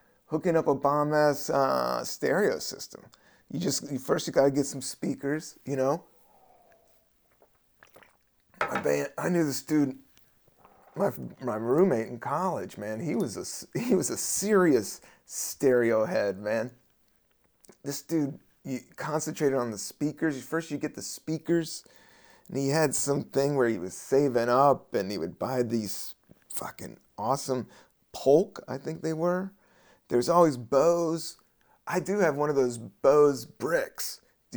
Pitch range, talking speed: 130-160 Hz, 150 wpm